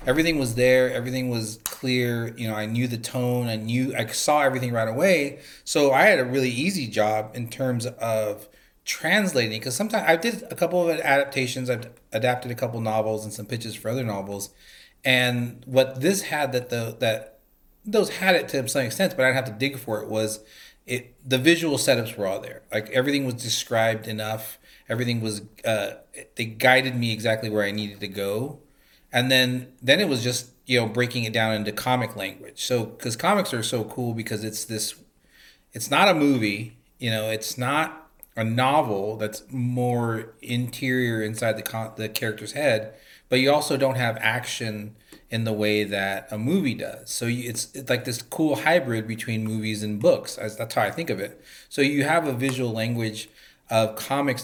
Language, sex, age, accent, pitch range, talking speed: English, male, 30-49, American, 110-130 Hz, 195 wpm